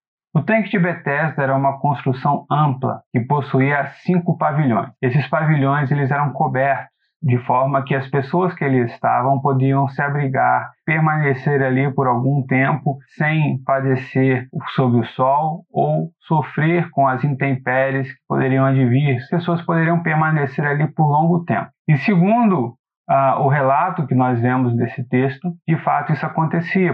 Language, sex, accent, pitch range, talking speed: Portuguese, male, Brazilian, 130-165 Hz, 145 wpm